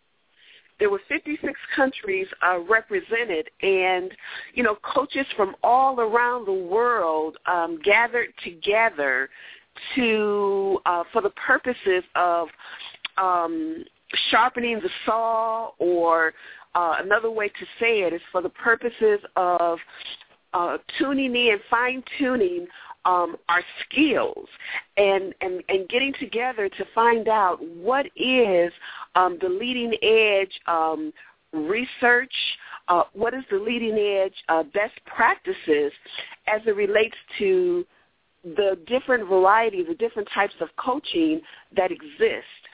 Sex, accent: female, American